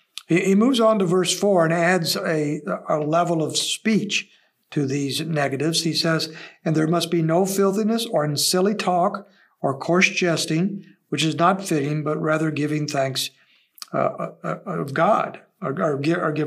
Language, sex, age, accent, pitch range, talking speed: English, male, 60-79, American, 155-180 Hz, 165 wpm